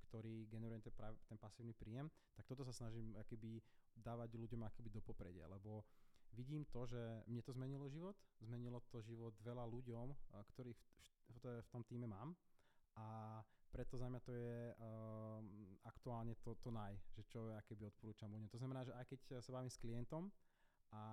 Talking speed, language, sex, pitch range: 170 wpm, Slovak, male, 110-125 Hz